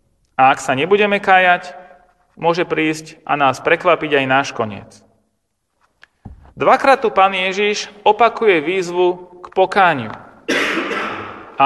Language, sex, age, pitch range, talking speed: Slovak, male, 40-59, 155-205 Hz, 115 wpm